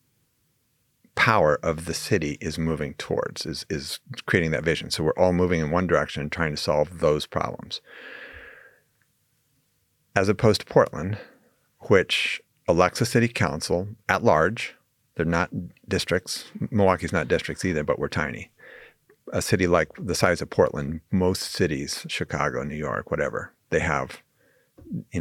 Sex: male